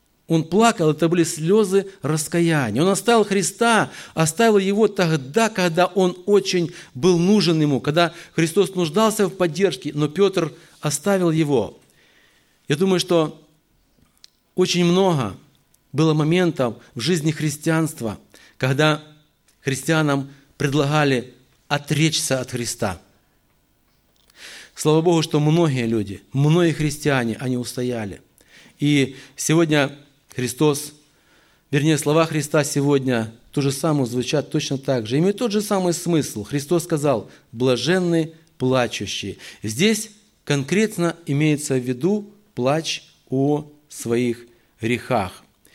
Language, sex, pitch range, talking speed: Russian, male, 135-180 Hz, 110 wpm